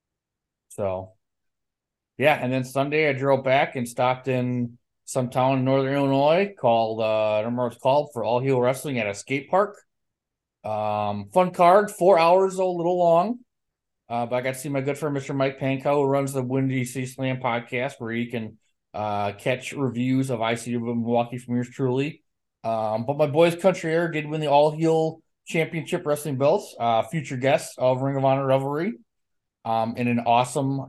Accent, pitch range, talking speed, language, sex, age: American, 120-155 Hz, 185 wpm, English, male, 20-39